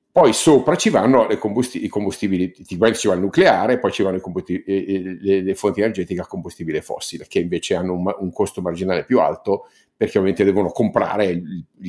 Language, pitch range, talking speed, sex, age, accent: Italian, 95-110 Hz, 185 wpm, male, 50-69, native